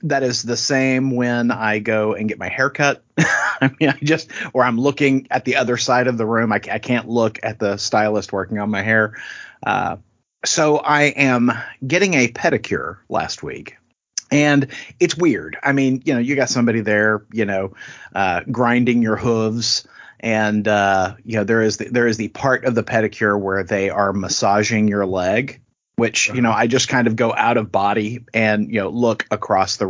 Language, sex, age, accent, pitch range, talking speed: English, male, 30-49, American, 110-140 Hz, 200 wpm